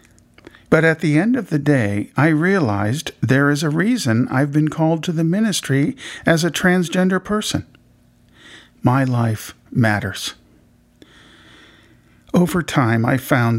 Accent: American